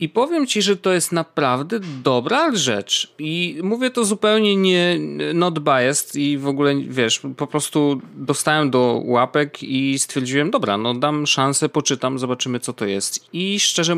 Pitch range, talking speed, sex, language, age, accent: 130-180 Hz, 165 wpm, male, Polish, 30-49, native